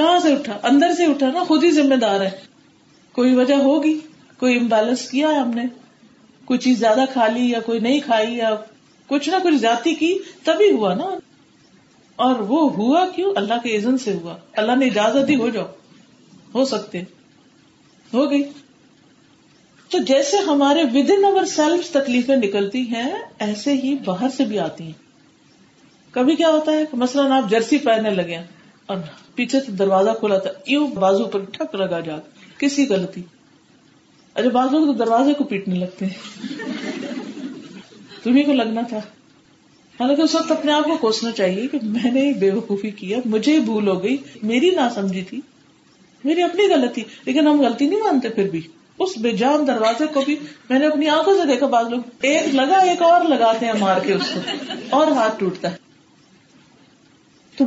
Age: 40-59